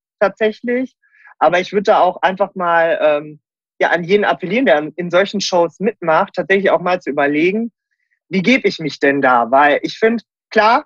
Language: German